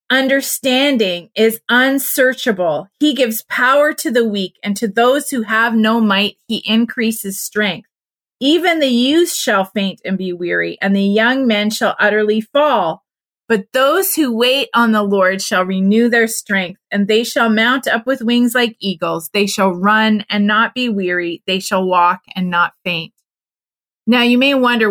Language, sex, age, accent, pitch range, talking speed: English, female, 30-49, American, 185-235 Hz, 170 wpm